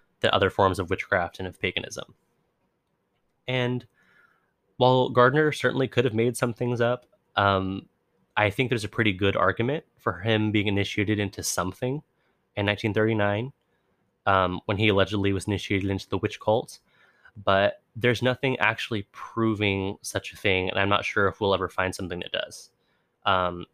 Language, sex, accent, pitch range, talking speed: English, male, American, 95-115 Hz, 160 wpm